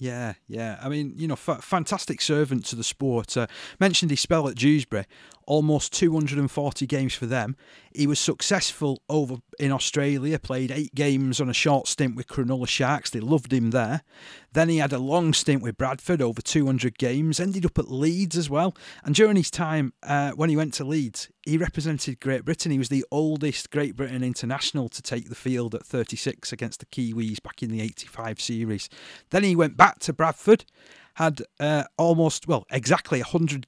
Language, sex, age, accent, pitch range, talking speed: English, male, 40-59, British, 125-155 Hz, 190 wpm